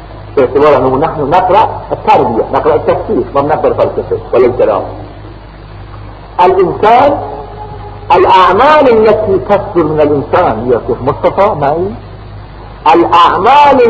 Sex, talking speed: male, 90 wpm